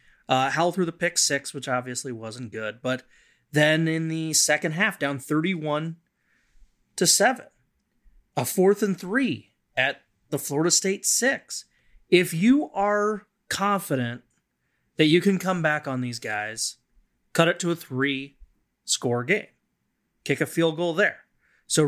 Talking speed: 155 wpm